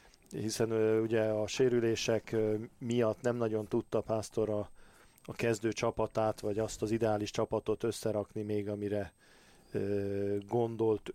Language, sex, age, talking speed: Hungarian, male, 40-59, 120 wpm